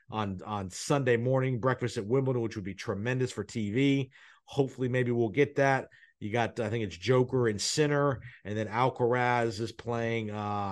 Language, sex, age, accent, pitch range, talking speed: English, male, 40-59, American, 110-130 Hz, 180 wpm